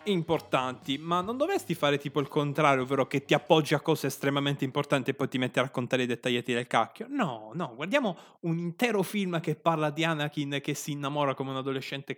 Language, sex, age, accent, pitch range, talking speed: Italian, male, 20-39, native, 130-165 Hz, 205 wpm